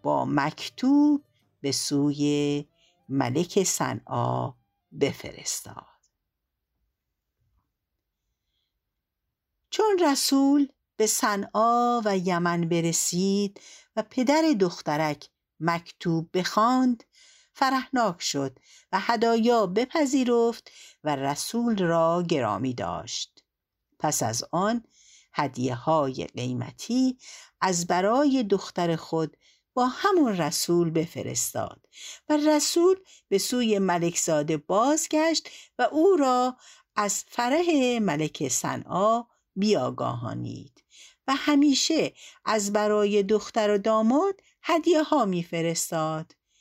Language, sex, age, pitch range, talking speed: Persian, female, 60-79, 160-260 Hz, 85 wpm